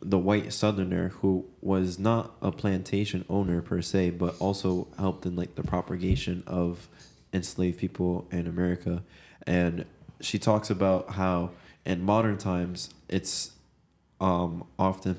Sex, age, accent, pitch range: male, 20-39, American, 85-95 Hz